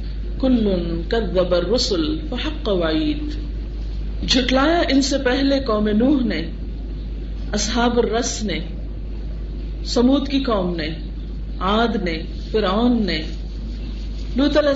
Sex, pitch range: female, 200-265 Hz